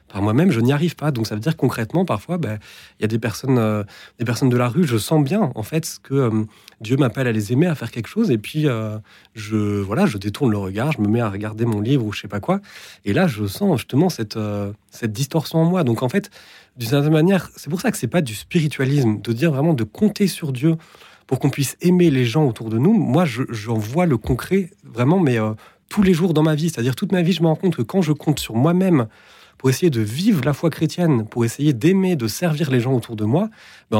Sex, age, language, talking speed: male, 30-49, French, 255 wpm